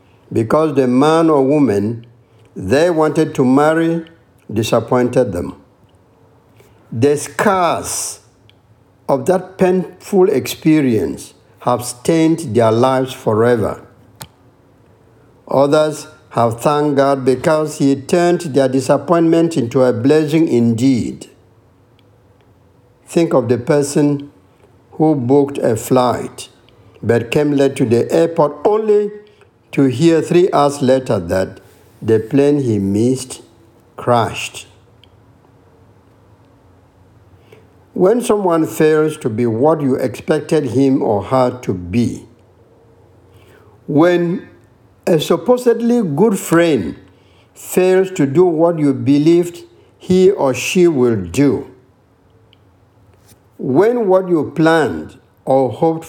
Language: English